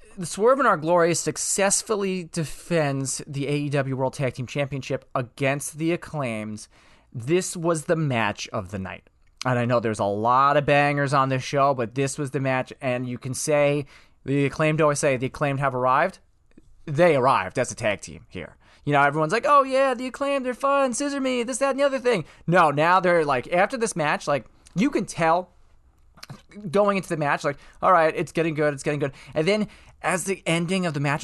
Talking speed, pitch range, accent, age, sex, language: 205 wpm, 135-175 Hz, American, 20-39, male, English